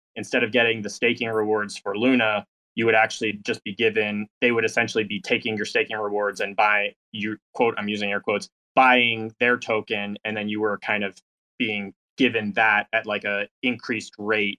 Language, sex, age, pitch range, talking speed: English, male, 20-39, 100-115 Hz, 195 wpm